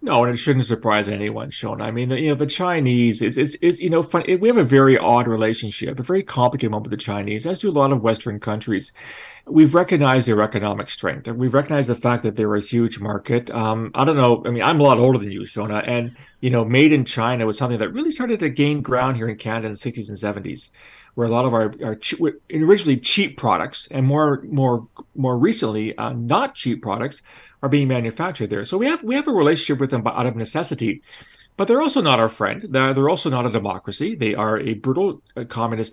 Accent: American